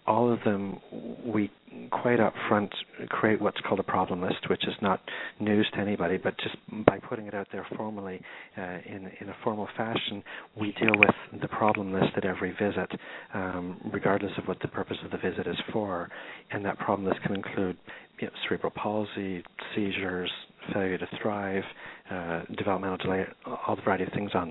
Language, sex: English, male